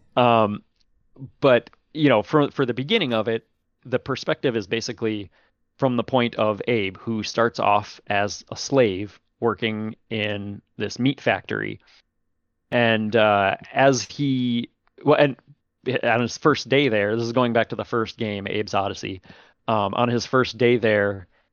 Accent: American